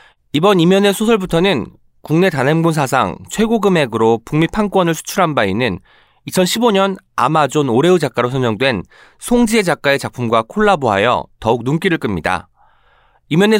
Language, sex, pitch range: Korean, male, 120-190 Hz